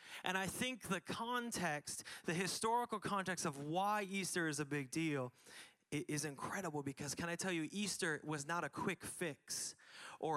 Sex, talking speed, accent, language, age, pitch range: male, 175 wpm, American, English, 20-39, 130-170 Hz